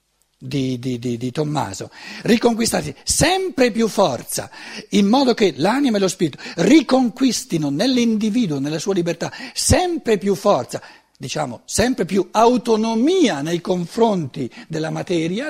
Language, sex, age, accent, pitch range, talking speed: Italian, male, 60-79, native, 160-245 Hz, 120 wpm